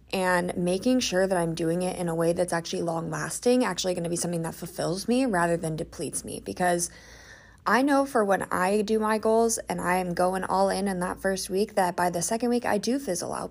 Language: English